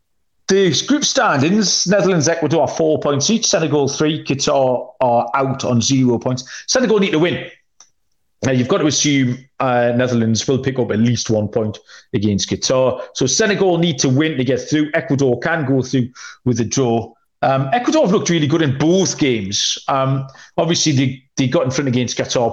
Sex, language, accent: male, English, British